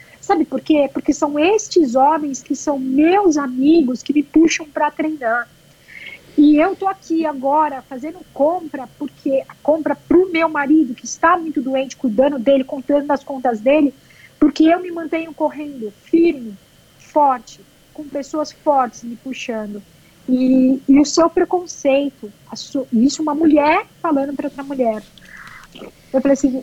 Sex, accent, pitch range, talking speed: female, Brazilian, 245-300 Hz, 150 wpm